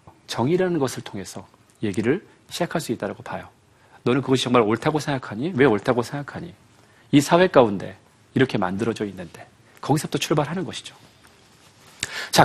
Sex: male